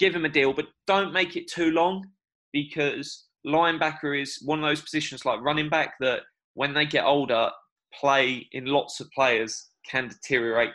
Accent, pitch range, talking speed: British, 135-155 Hz, 180 wpm